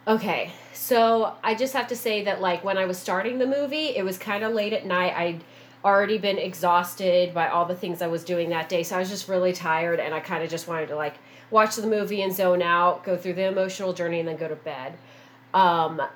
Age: 30-49